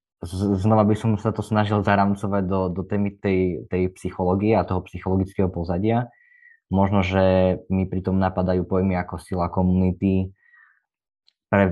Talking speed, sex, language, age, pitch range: 145 wpm, male, Slovak, 20-39, 90-100 Hz